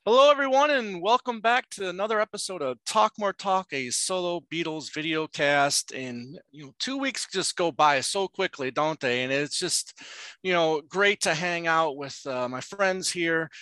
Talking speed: 190 wpm